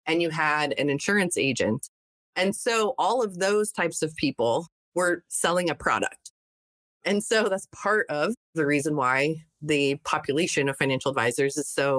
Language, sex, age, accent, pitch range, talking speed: English, female, 30-49, American, 145-175 Hz, 165 wpm